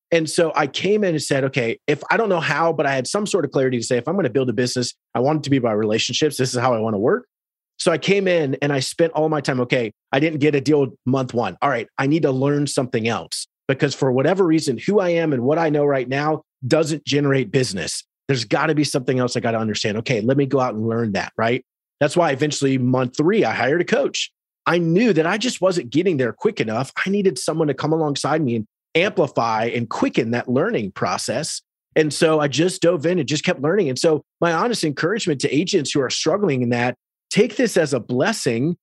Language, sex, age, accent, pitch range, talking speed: English, male, 30-49, American, 130-165 Hz, 255 wpm